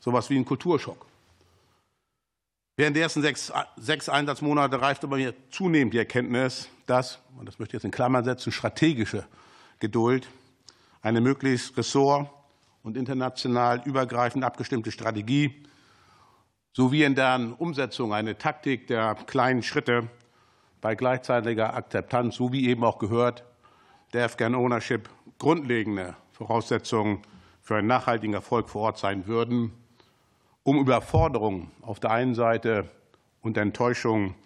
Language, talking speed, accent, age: German, 130 wpm, German, 50-69